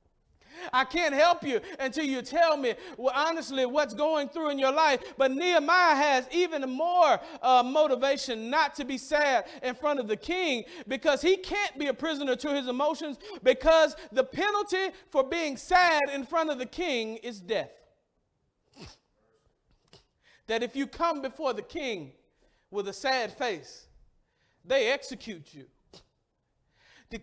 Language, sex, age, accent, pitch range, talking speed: English, male, 40-59, American, 265-330 Hz, 150 wpm